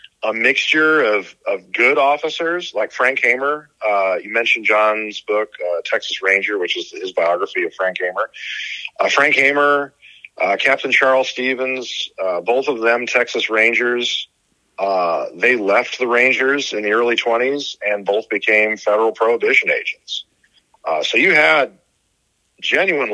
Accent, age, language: American, 40-59, English